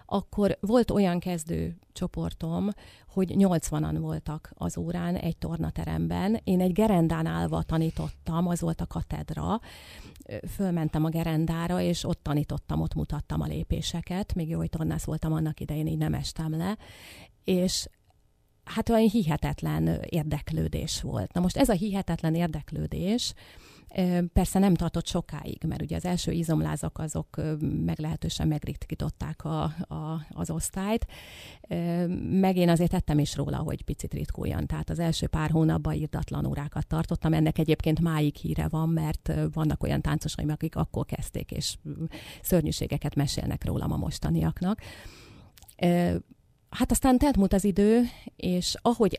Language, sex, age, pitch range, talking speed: Hungarian, female, 30-49, 150-175 Hz, 135 wpm